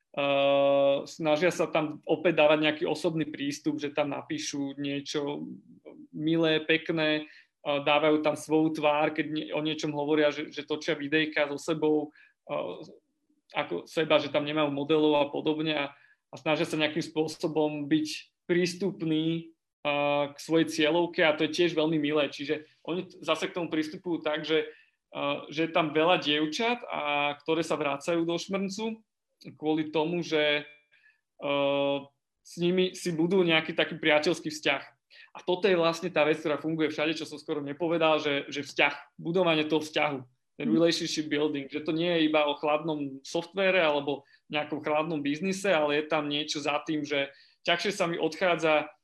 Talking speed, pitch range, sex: 155 wpm, 150-170 Hz, male